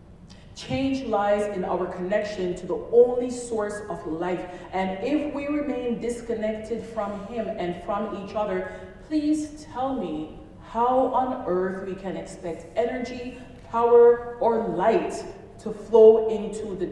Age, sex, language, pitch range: 40-59, female, English, 170-240 Hz